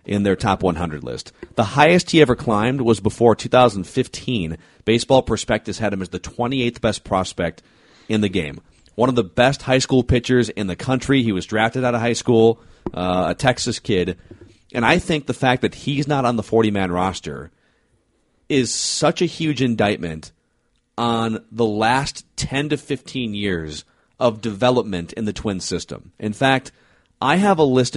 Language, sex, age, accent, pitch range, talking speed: English, male, 30-49, American, 95-125 Hz, 175 wpm